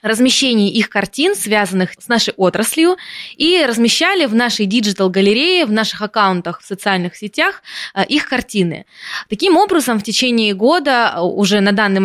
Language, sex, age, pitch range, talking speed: Russian, female, 20-39, 195-245 Hz, 140 wpm